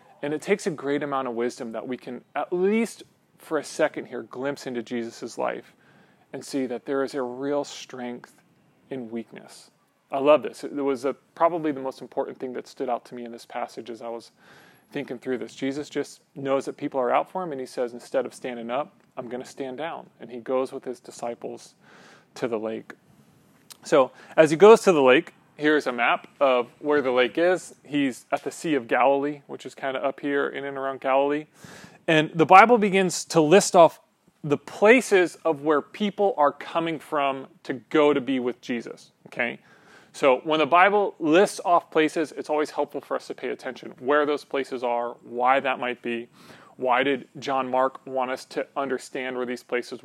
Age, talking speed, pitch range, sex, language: 30-49, 205 wpm, 130-155 Hz, male, English